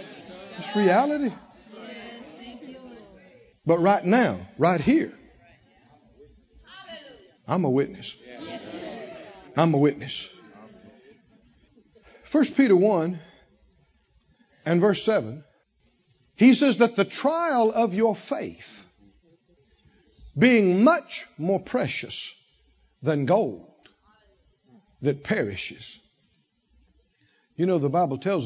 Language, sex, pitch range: English, male, 140-230 Hz